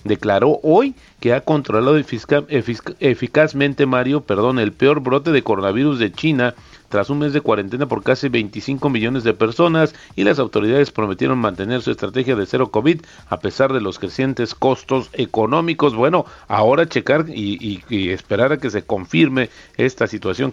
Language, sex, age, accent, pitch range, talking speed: Spanish, male, 40-59, Mexican, 110-140 Hz, 165 wpm